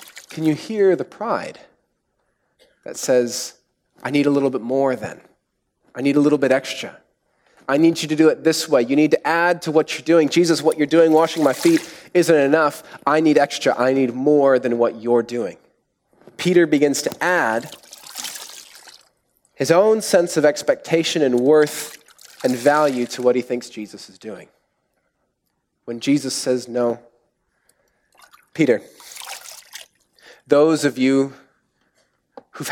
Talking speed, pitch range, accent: 155 wpm, 125-150 Hz, American